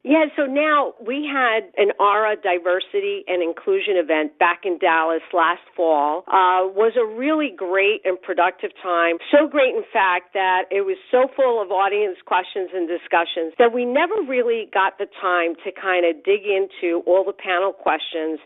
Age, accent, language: 50-69, American, English